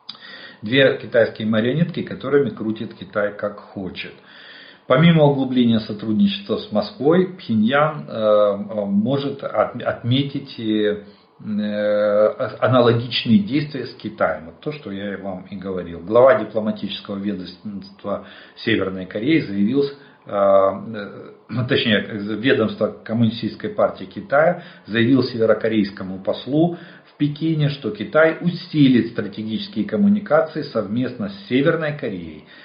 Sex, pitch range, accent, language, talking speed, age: male, 105-150 Hz, native, Russian, 100 wpm, 50-69